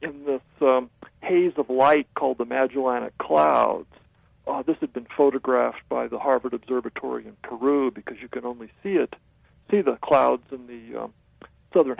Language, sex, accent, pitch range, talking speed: English, male, American, 125-170 Hz, 170 wpm